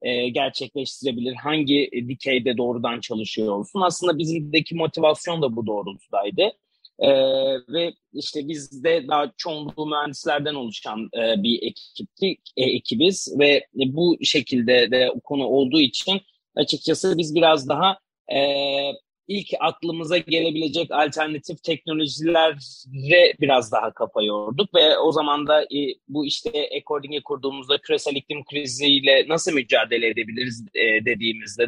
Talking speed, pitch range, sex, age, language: 115 wpm, 135-170 Hz, male, 30-49, Turkish